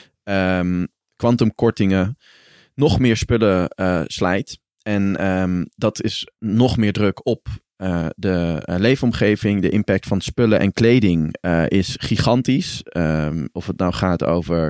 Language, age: Dutch, 20-39